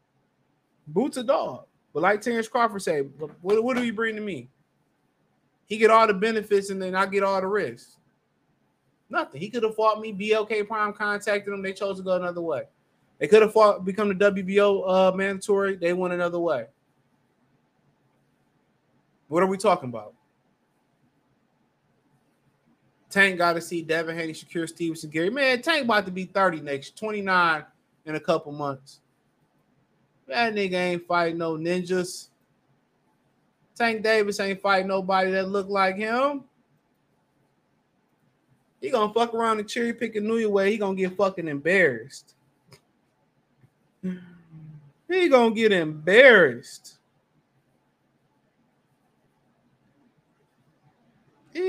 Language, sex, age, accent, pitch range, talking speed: English, male, 20-39, American, 175-220 Hz, 140 wpm